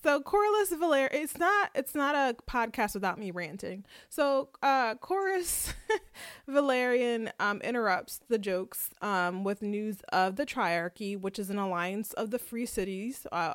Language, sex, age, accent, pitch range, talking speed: English, female, 20-39, American, 190-240 Hz, 150 wpm